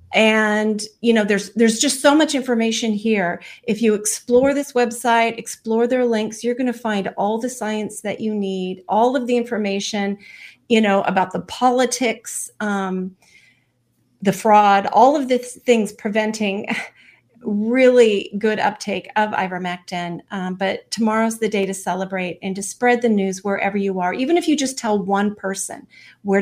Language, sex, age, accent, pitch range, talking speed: English, female, 40-59, American, 200-230 Hz, 165 wpm